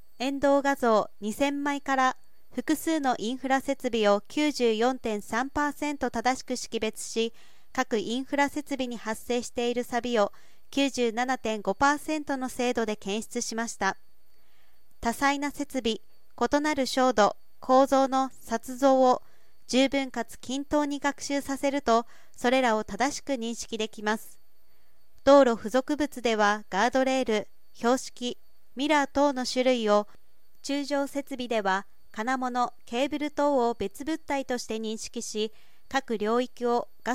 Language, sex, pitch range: Japanese, female, 225-275 Hz